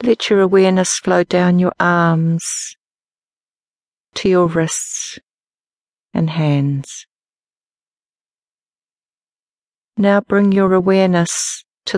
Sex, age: female, 50-69